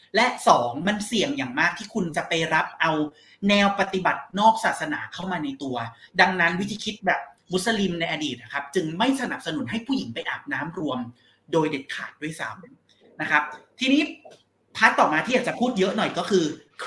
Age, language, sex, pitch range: 30-49, Thai, male, 150-220 Hz